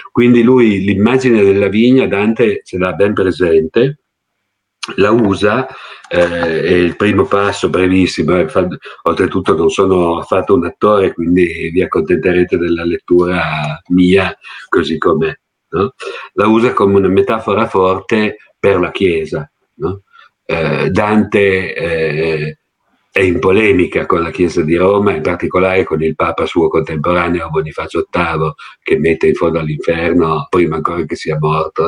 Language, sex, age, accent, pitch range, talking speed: Italian, male, 50-69, native, 85-110 Hz, 135 wpm